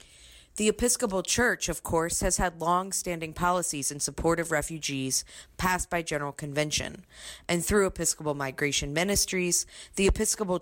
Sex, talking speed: female, 140 wpm